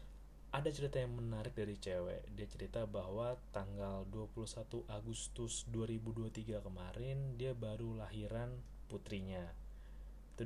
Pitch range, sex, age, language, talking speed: 70-115 Hz, male, 20-39, Indonesian, 110 wpm